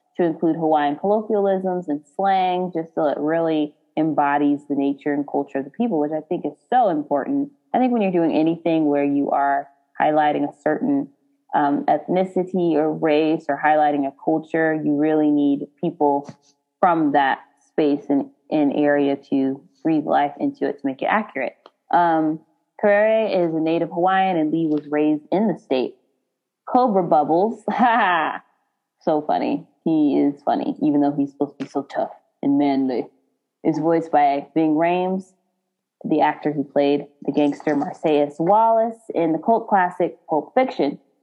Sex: female